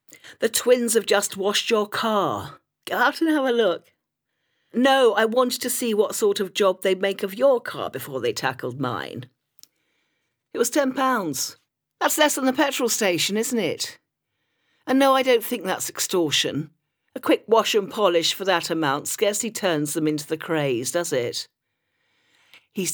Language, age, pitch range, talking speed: English, 50-69, 155-255 Hz, 175 wpm